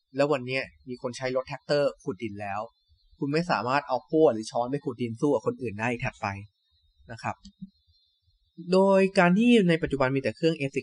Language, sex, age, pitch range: Thai, male, 20-39, 100-135 Hz